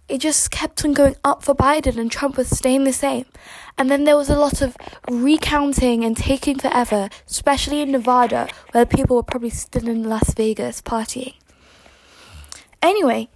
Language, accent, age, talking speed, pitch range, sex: English, British, 10-29, 170 wpm, 225-265 Hz, female